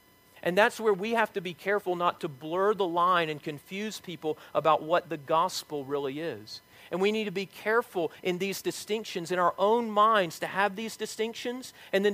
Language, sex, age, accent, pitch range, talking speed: English, male, 40-59, American, 115-185 Hz, 205 wpm